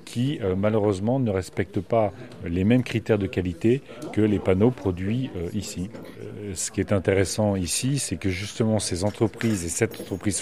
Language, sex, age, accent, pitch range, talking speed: French, male, 40-59, French, 100-120 Hz, 180 wpm